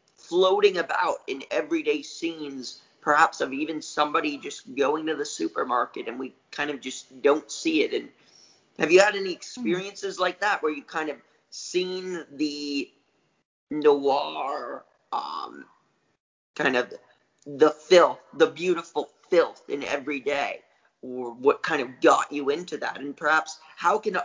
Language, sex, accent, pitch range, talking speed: English, male, American, 145-210 Hz, 145 wpm